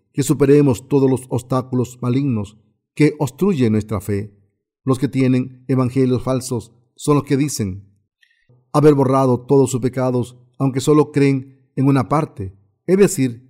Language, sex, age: Spanish, male, 50-69